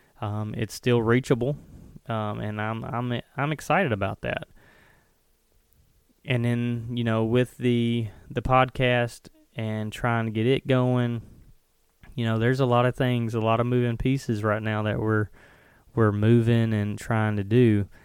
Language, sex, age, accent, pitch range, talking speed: English, male, 20-39, American, 110-125 Hz, 160 wpm